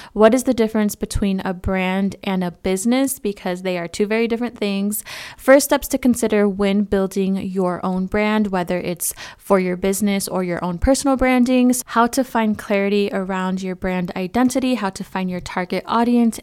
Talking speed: 185 wpm